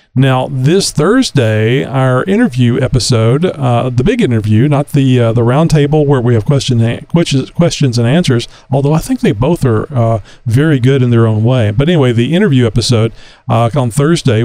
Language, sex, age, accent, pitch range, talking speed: English, male, 40-59, American, 120-160 Hz, 185 wpm